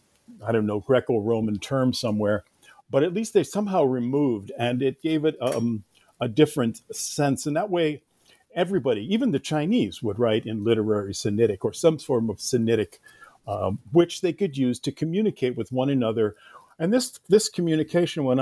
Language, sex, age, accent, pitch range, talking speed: English, male, 50-69, American, 110-155 Hz, 170 wpm